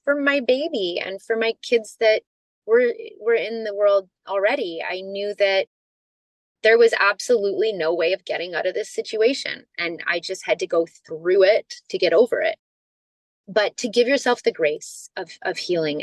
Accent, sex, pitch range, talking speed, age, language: American, female, 165-205 Hz, 180 wpm, 20-39, English